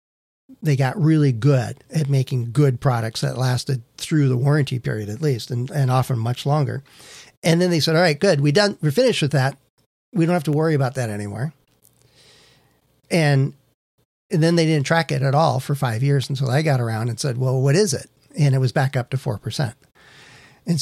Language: English